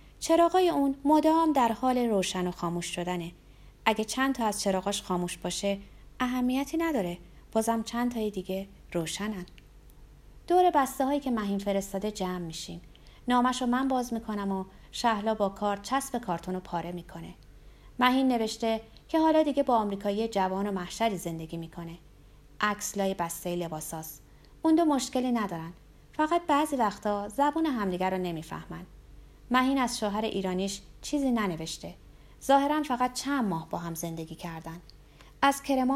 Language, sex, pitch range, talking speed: Persian, female, 175-255 Hz, 140 wpm